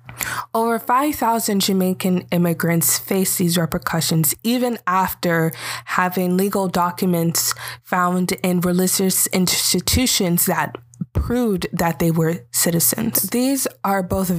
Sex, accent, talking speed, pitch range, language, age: female, American, 105 wpm, 160-195 Hz, English, 20-39